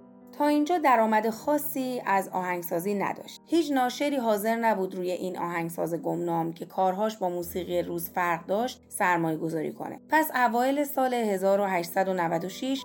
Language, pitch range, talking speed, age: Persian, 185-270 Hz, 120 wpm, 30-49